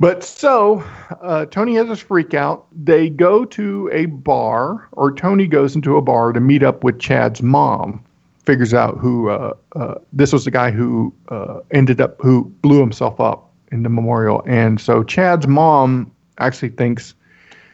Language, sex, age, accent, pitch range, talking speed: English, male, 50-69, American, 120-155 Hz, 175 wpm